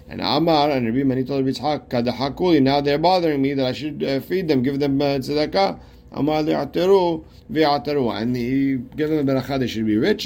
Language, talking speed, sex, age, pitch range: English, 220 wpm, male, 50-69, 120-145 Hz